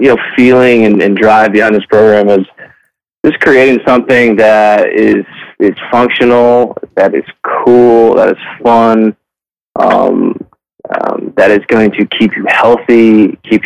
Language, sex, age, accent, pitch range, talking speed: English, male, 20-39, American, 105-115 Hz, 145 wpm